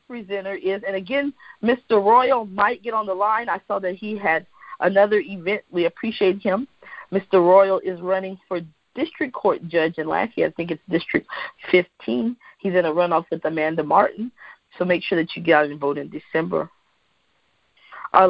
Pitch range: 165-220 Hz